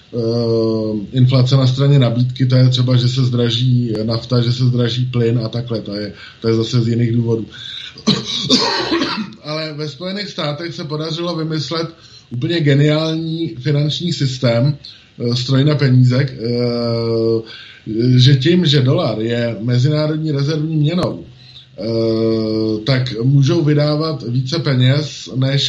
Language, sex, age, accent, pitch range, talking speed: Czech, male, 20-39, native, 120-145 Hz, 120 wpm